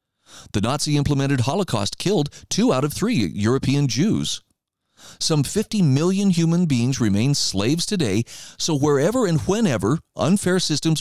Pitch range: 115-165 Hz